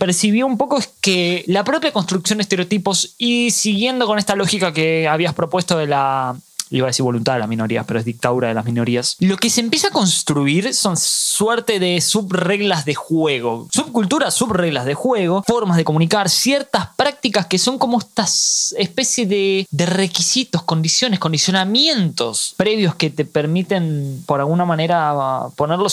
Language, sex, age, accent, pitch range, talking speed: Spanish, male, 20-39, Argentinian, 145-205 Hz, 165 wpm